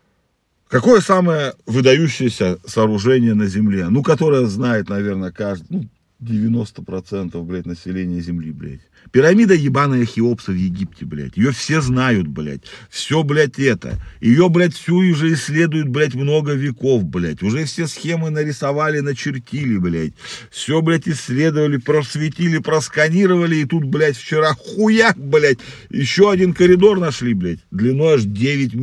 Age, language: 40-59, Russian